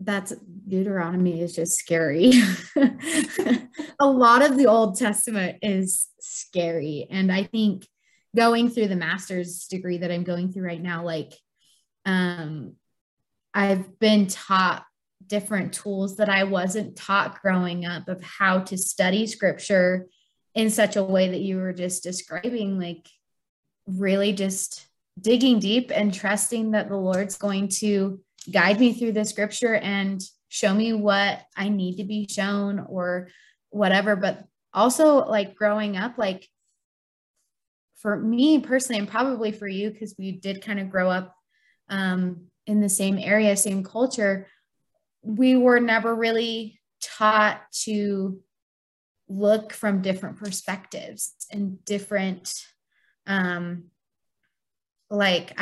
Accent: American